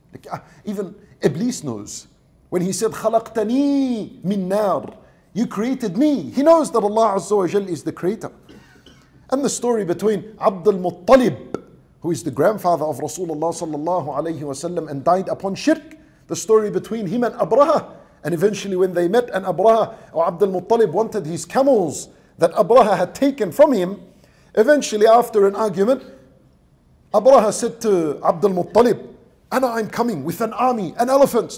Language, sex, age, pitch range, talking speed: English, male, 50-69, 175-235 Hz, 145 wpm